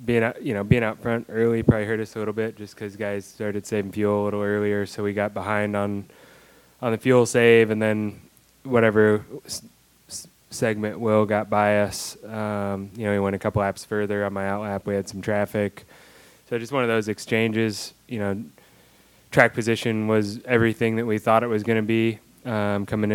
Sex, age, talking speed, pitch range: male, 20-39, 200 wpm, 105-115 Hz